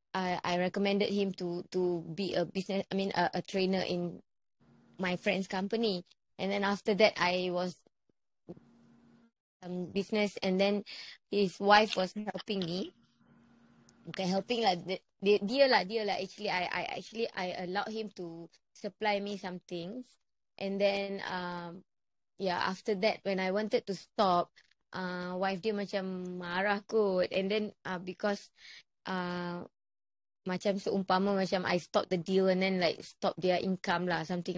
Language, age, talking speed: Malay, 20-39, 155 wpm